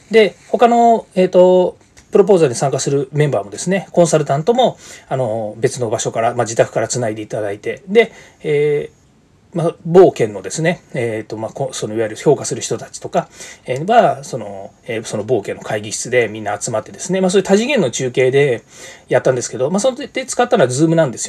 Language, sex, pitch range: Japanese, male, 135-220 Hz